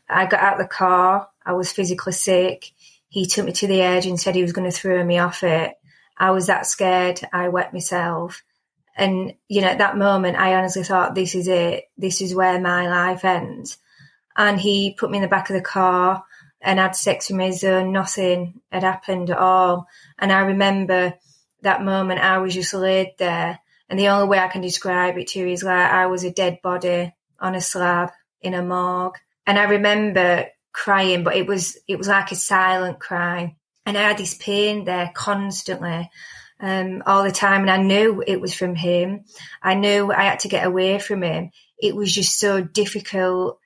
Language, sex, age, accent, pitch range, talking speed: English, female, 20-39, British, 180-200 Hz, 205 wpm